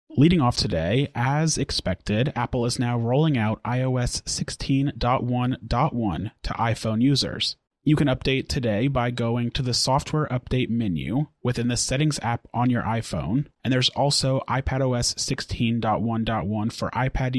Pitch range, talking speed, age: 115-135 Hz, 140 wpm, 30-49